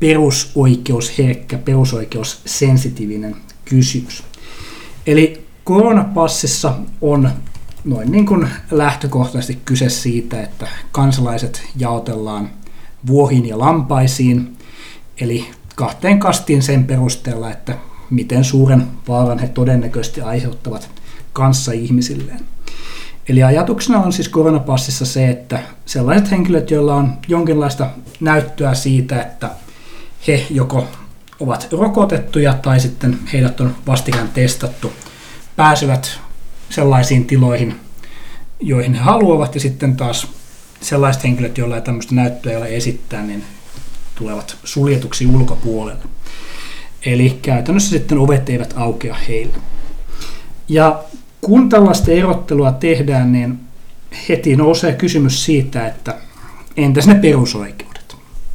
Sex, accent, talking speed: male, native, 100 wpm